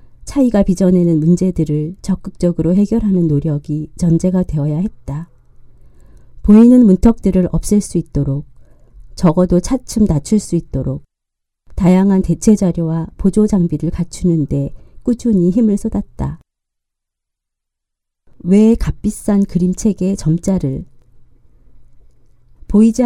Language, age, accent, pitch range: Korean, 40-59, native, 160-205 Hz